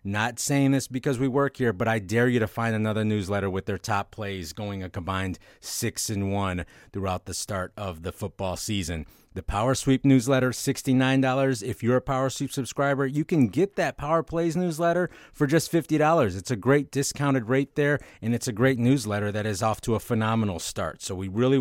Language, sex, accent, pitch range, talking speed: English, male, American, 100-135 Hz, 205 wpm